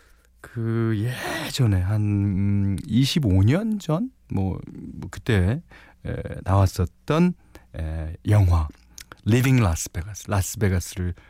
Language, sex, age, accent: Korean, male, 40-59, native